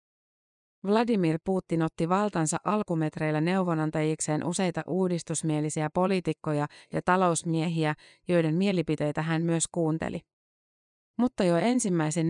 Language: Finnish